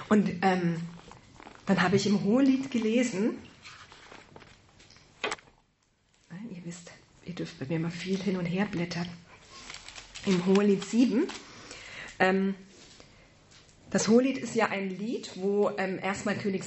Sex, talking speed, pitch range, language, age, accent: female, 125 wpm, 190-235 Hz, German, 30-49, German